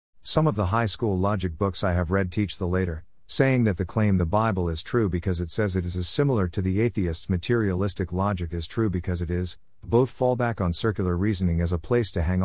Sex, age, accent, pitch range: male, 50-69, American, 85-120 Hz